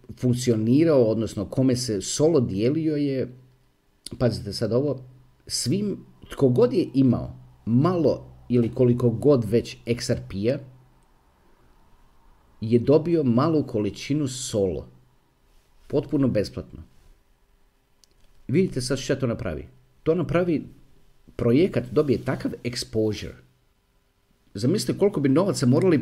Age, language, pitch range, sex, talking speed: 50-69, Croatian, 115-150 Hz, male, 100 wpm